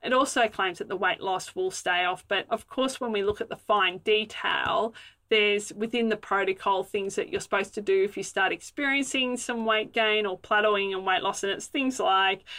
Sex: female